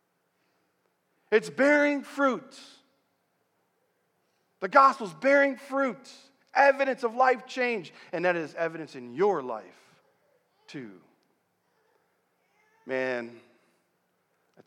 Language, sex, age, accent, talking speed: English, male, 40-59, American, 85 wpm